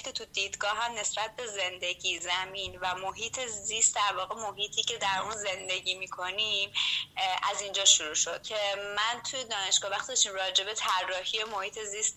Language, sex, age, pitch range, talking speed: Persian, female, 20-39, 180-215 Hz, 160 wpm